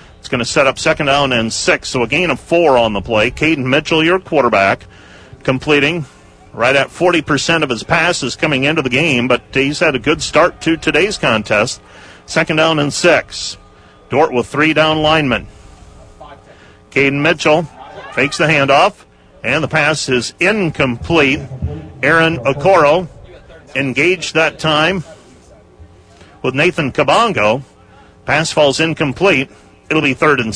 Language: English